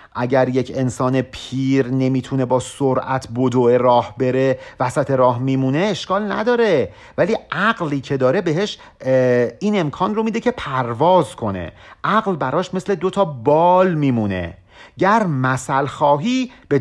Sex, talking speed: male, 130 wpm